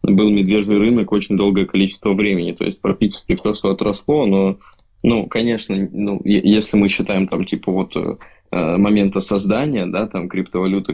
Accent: native